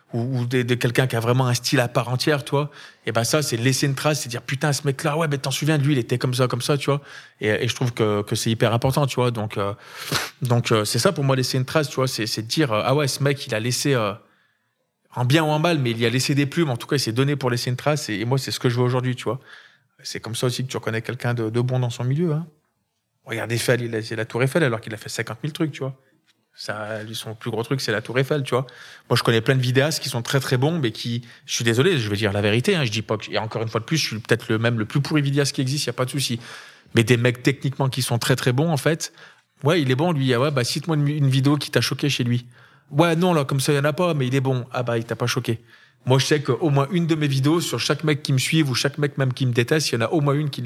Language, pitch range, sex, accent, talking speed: French, 120-145 Hz, male, French, 325 wpm